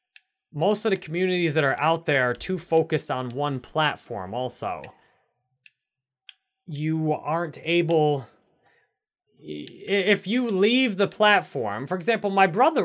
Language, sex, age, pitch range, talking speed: English, male, 20-39, 135-180 Hz, 125 wpm